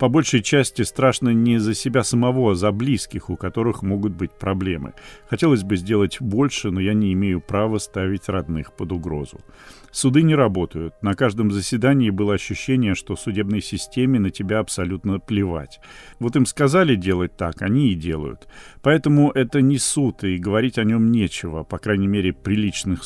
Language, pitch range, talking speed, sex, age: Russian, 95-120 Hz, 170 wpm, male, 40-59